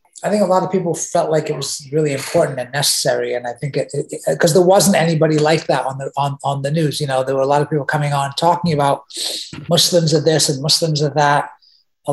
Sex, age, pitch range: male, 30-49, 140-170 Hz